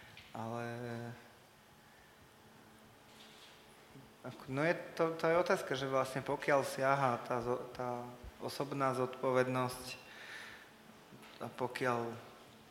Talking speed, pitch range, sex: 70 wpm, 120-125 Hz, male